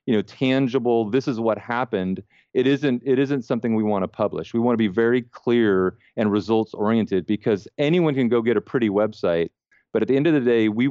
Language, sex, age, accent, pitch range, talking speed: English, male, 40-59, American, 100-125 Hz, 225 wpm